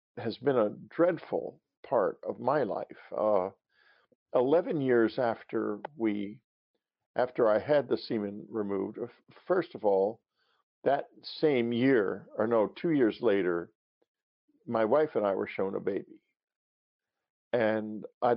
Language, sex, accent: English, male, American